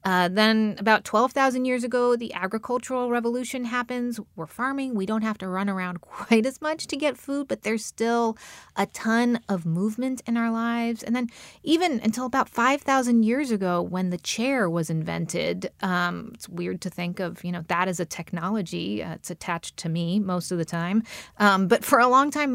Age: 30-49